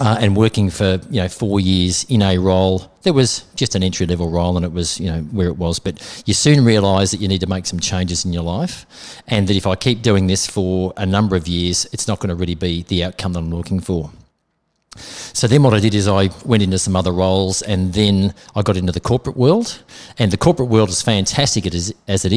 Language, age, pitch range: English, 40-59, 90-105 Hz